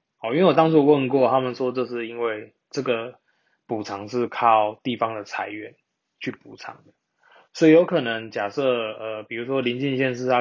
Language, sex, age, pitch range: Chinese, male, 20-39, 110-135 Hz